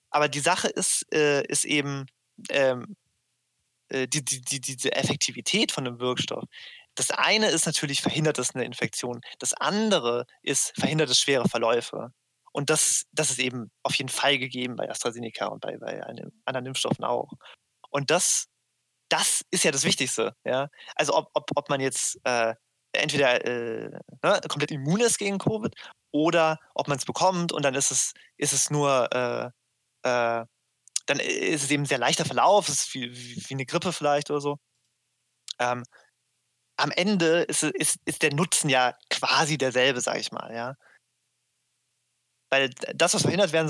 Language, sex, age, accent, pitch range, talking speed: German, male, 20-39, German, 125-155 Hz, 160 wpm